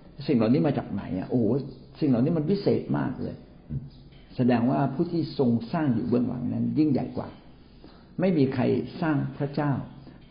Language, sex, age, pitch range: Thai, male, 60-79, 110-135 Hz